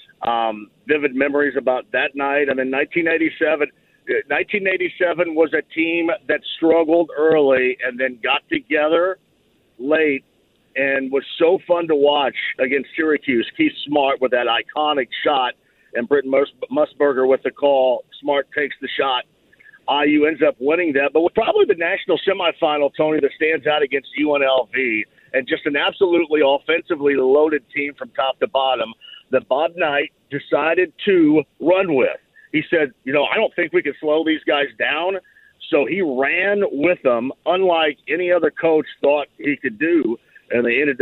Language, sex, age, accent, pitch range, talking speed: English, male, 50-69, American, 135-180 Hz, 160 wpm